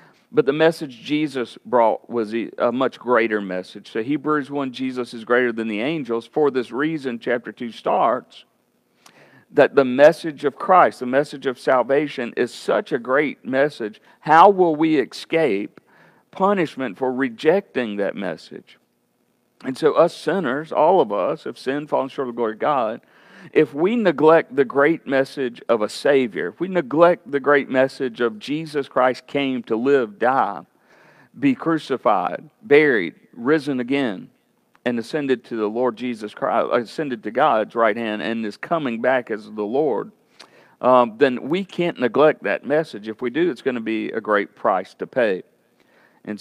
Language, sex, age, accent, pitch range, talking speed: English, male, 50-69, American, 120-150 Hz, 170 wpm